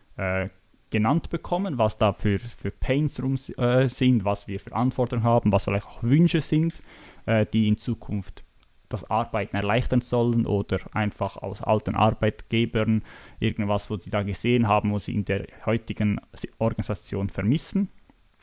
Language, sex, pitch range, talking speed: German, male, 105-120 Hz, 150 wpm